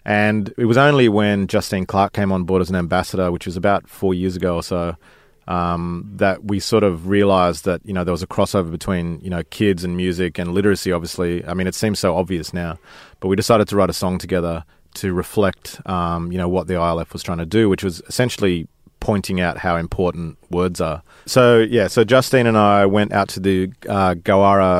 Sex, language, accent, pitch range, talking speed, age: male, English, Australian, 90-100 Hz, 220 wpm, 30-49